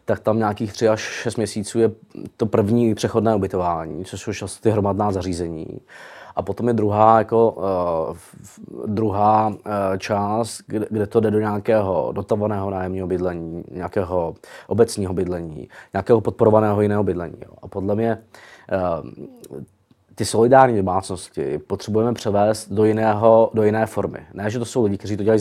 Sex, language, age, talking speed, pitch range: male, Czech, 20-39, 155 wpm, 100-115 Hz